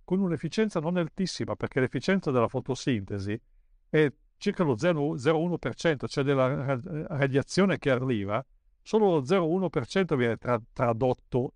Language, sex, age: Italian, male, 50-69